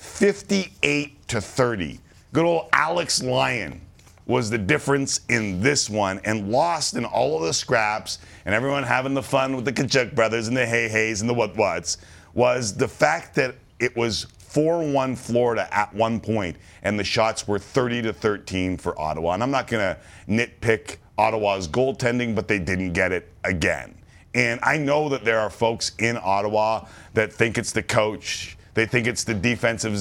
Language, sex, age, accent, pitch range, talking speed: English, male, 50-69, American, 95-120 Hz, 180 wpm